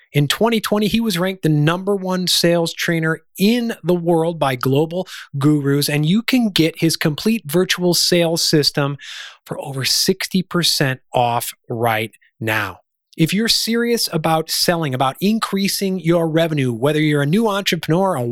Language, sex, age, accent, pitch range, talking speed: English, male, 30-49, American, 150-195 Hz, 150 wpm